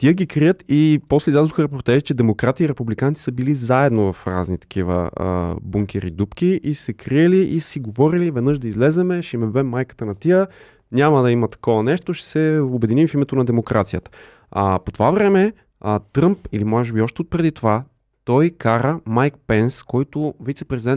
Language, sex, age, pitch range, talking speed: Bulgarian, male, 20-39, 105-145 Hz, 190 wpm